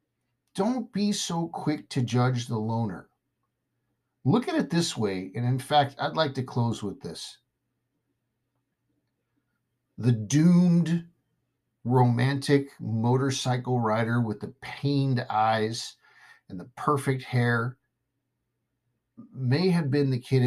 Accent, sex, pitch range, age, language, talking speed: American, male, 120-140 Hz, 50-69, English, 115 wpm